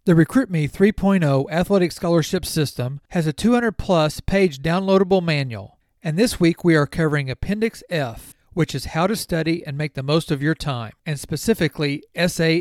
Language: English